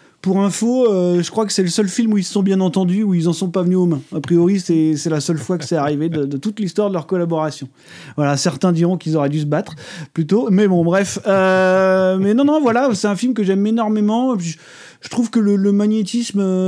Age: 30-49